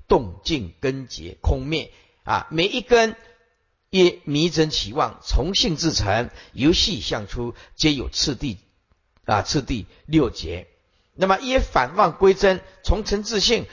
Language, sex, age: Chinese, male, 50-69